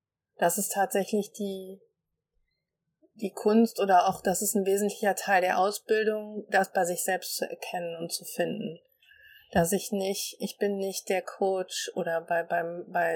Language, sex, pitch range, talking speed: German, female, 170-205 Hz, 165 wpm